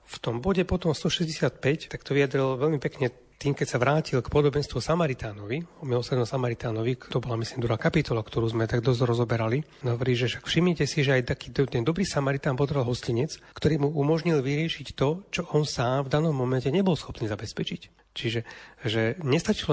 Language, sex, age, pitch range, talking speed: Slovak, male, 30-49, 120-145 Hz, 175 wpm